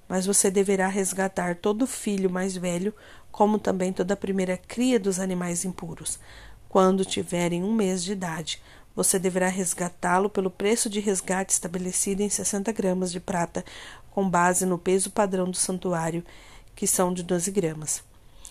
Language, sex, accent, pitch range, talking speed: Portuguese, female, Brazilian, 180-210 Hz, 155 wpm